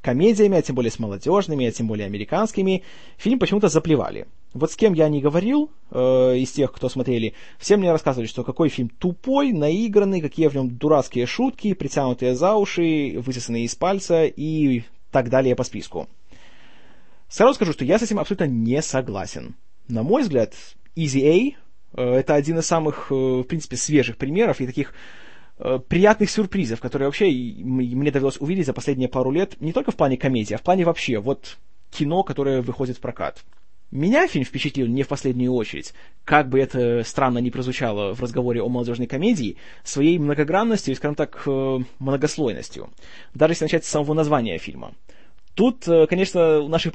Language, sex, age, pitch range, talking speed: Russian, male, 20-39, 125-170 Hz, 175 wpm